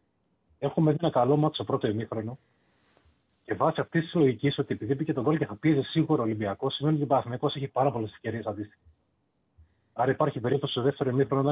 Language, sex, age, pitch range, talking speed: Greek, male, 30-49, 105-145 Hz, 210 wpm